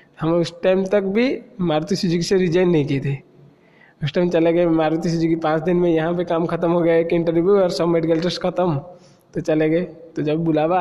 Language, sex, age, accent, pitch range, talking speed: Hindi, male, 20-39, native, 155-180 Hz, 220 wpm